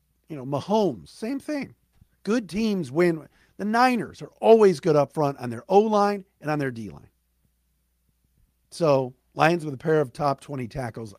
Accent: American